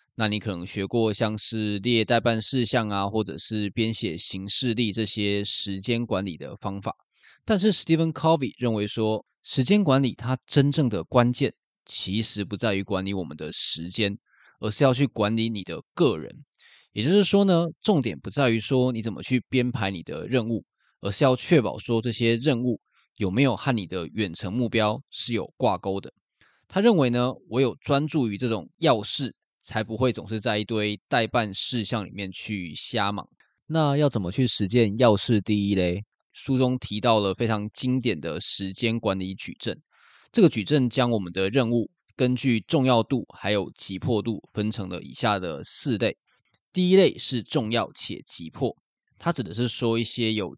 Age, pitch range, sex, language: 20-39, 100-125 Hz, male, Chinese